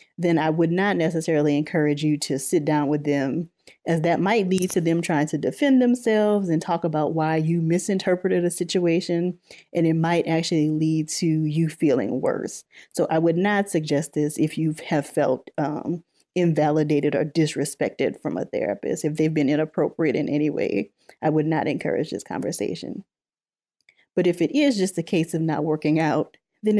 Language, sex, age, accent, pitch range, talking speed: English, female, 30-49, American, 155-190 Hz, 180 wpm